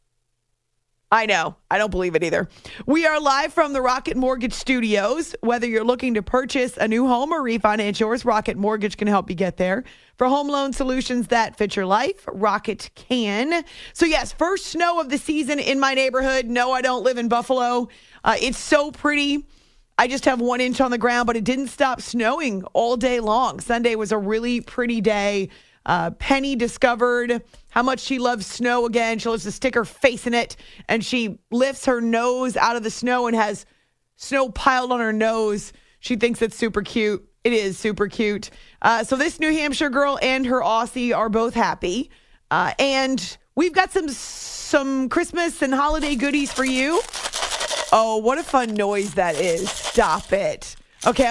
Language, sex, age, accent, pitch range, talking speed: English, female, 30-49, American, 220-265 Hz, 190 wpm